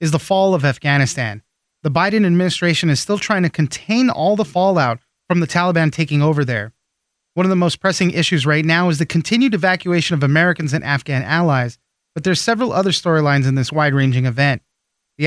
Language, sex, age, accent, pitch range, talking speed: English, male, 30-49, American, 145-185 Hz, 195 wpm